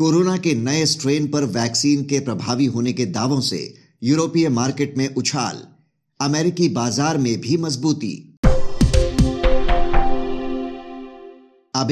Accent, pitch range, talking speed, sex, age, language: native, 130-155 Hz, 110 wpm, male, 50-69, Hindi